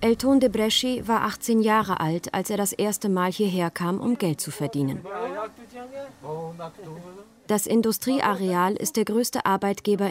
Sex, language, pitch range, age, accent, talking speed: female, German, 175-220 Hz, 30-49, German, 140 wpm